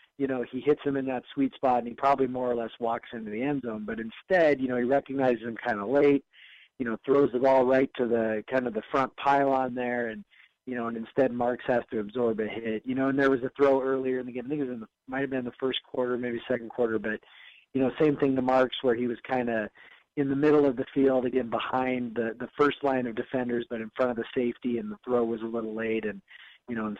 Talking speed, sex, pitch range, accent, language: 265 wpm, male, 115-140 Hz, American, English